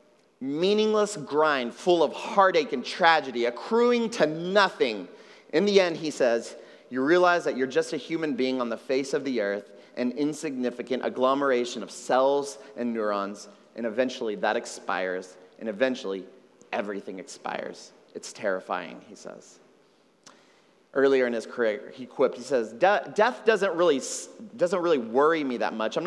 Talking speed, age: 155 wpm, 30-49